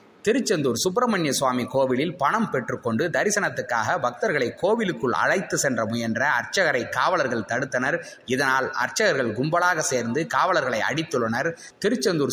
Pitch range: 130-180 Hz